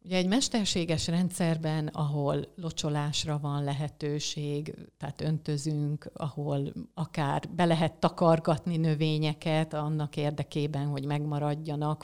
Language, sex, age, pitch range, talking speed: Hungarian, female, 50-69, 145-165 Hz, 100 wpm